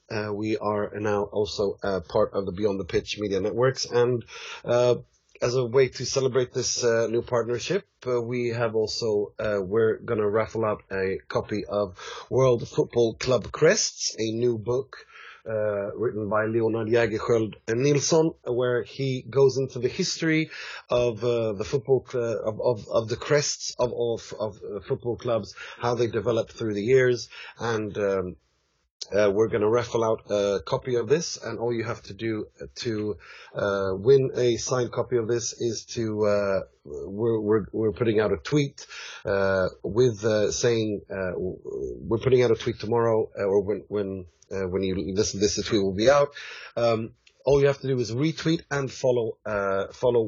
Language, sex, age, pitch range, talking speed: English, male, 30-49, 105-125 Hz, 180 wpm